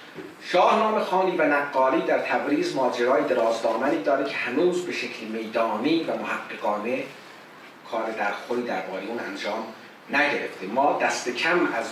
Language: Persian